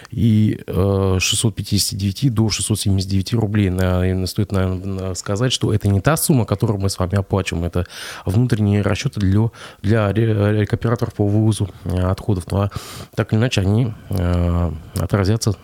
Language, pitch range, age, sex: Russian, 95-115 Hz, 20-39, male